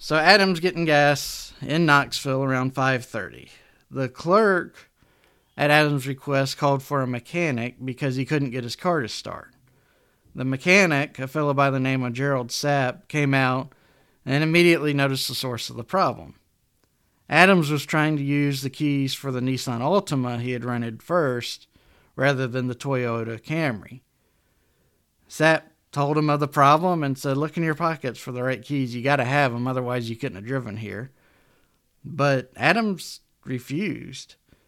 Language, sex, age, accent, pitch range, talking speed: English, male, 40-59, American, 130-150 Hz, 165 wpm